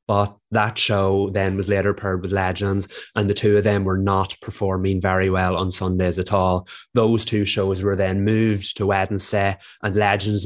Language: English